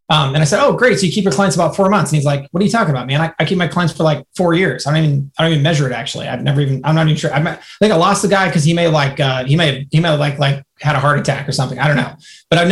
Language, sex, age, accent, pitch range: English, male, 30-49, American, 150-195 Hz